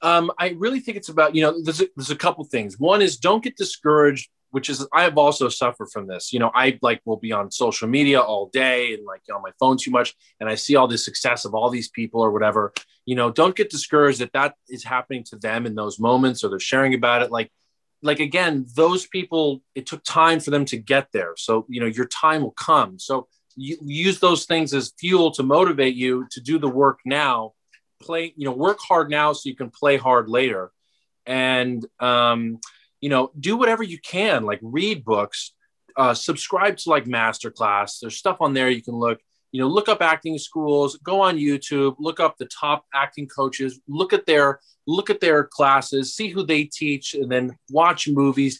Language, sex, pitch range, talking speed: English, male, 125-160 Hz, 220 wpm